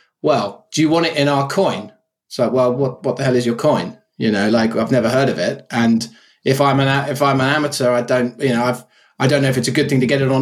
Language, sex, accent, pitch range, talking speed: English, male, British, 125-150 Hz, 290 wpm